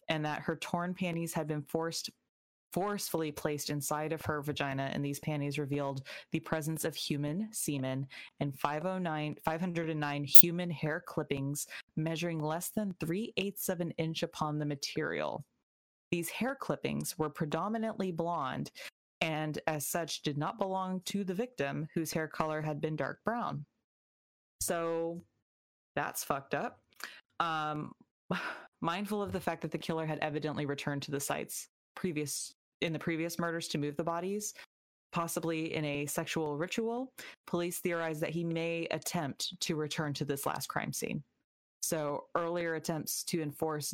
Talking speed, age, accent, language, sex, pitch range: 155 wpm, 20-39, American, English, female, 150-175 Hz